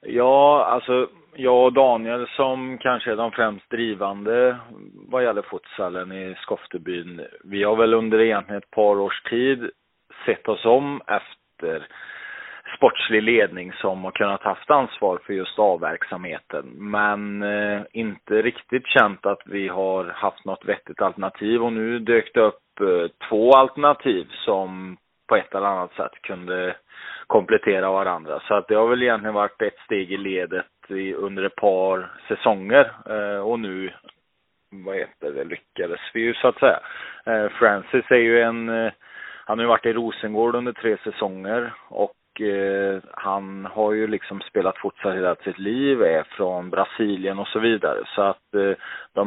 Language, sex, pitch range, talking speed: English, male, 95-120 Hz, 150 wpm